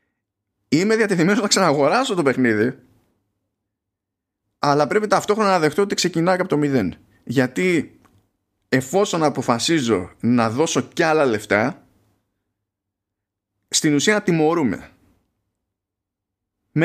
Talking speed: 100 wpm